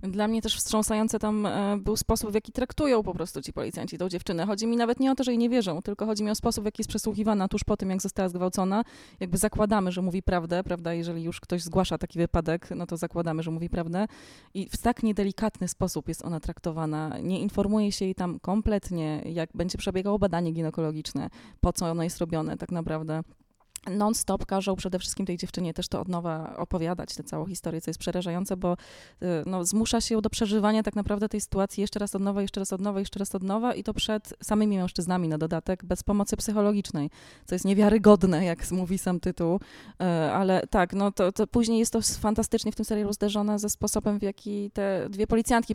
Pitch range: 170-210 Hz